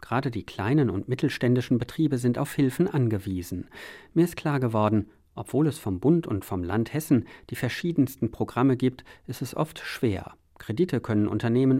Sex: male